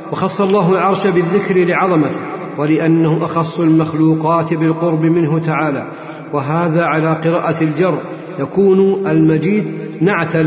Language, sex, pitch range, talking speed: Arabic, male, 155-175 Hz, 105 wpm